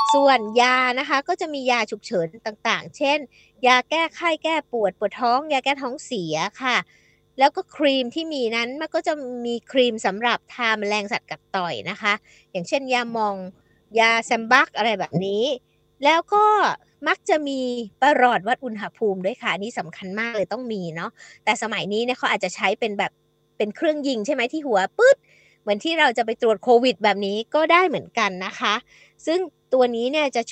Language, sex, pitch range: Thai, female, 205-265 Hz